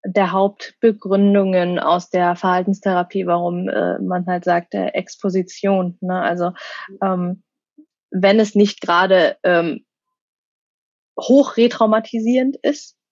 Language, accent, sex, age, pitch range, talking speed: German, German, female, 20-39, 180-205 Hz, 100 wpm